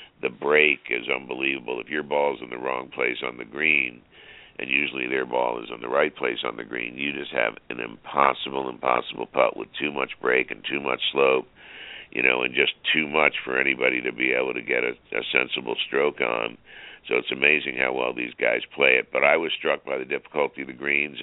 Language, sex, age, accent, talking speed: English, male, 60-79, American, 220 wpm